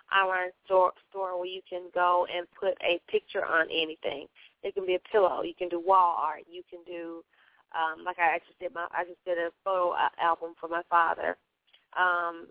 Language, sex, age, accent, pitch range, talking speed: English, female, 20-39, American, 175-205 Hz, 200 wpm